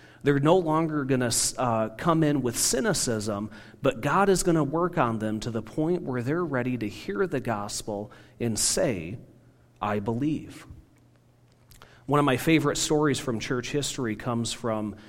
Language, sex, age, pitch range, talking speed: English, male, 40-59, 115-155 Hz, 165 wpm